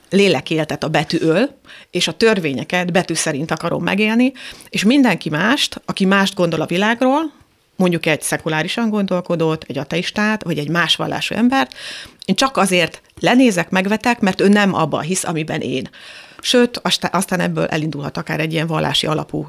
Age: 30-49